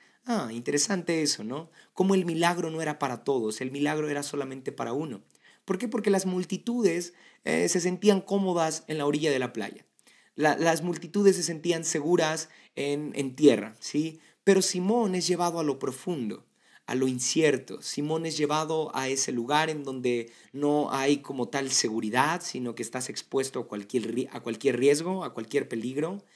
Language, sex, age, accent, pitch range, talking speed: Spanish, male, 30-49, Mexican, 135-185 Hz, 175 wpm